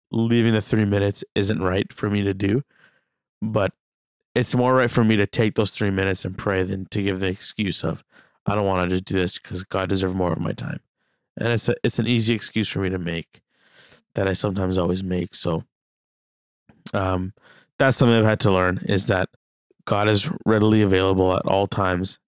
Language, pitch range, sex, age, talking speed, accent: English, 95-115 Hz, male, 20-39, 205 wpm, American